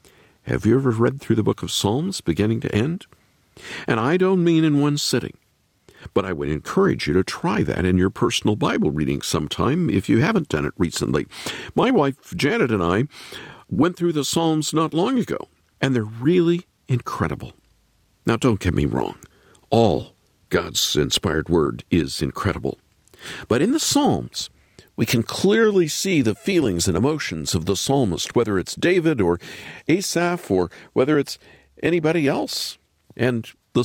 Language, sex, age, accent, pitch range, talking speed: English, male, 50-69, American, 100-165 Hz, 165 wpm